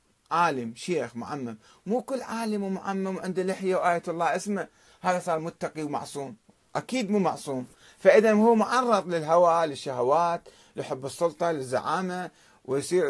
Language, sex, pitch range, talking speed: Arabic, male, 135-195 Hz, 130 wpm